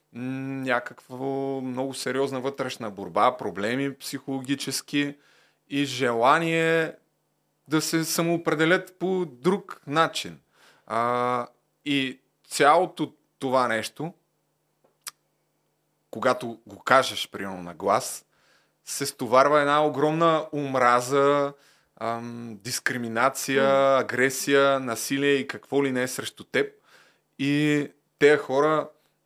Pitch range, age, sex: 125-150 Hz, 30-49, male